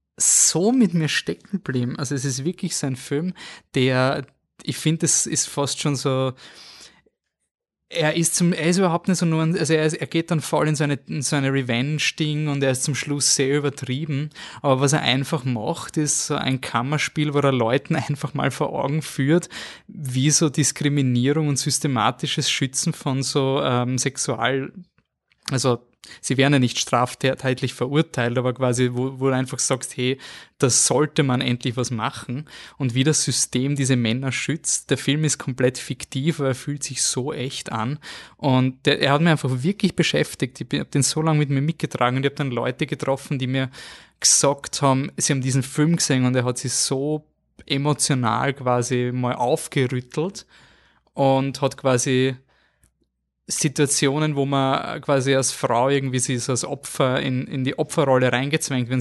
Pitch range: 130-150 Hz